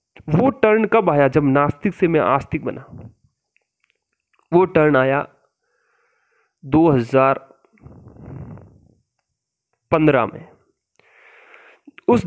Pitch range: 130-170 Hz